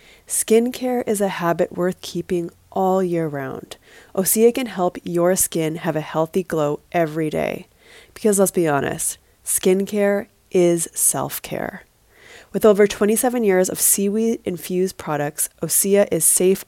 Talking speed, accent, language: 135 wpm, American, English